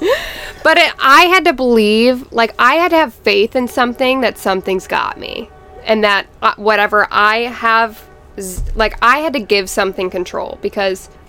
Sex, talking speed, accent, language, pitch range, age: female, 170 wpm, American, English, 200-235 Hz, 10-29